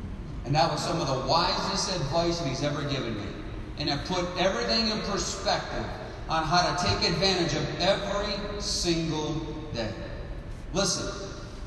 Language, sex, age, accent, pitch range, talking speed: English, male, 40-59, American, 170-230 Hz, 145 wpm